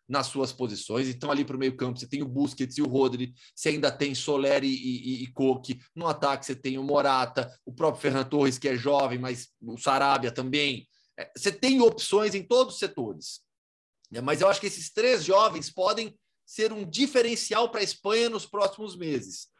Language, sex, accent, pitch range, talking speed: Portuguese, male, Brazilian, 135-215 Hz, 195 wpm